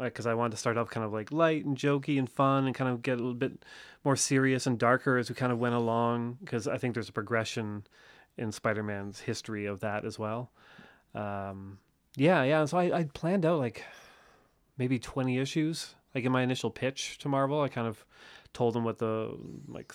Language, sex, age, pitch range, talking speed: English, male, 30-49, 110-130 Hz, 215 wpm